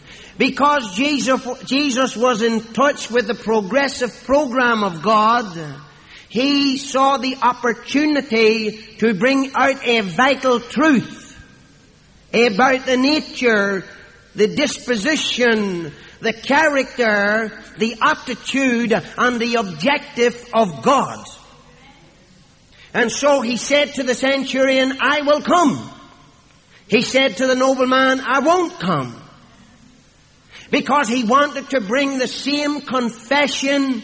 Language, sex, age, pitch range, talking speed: English, male, 50-69, 220-270 Hz, 110 wpm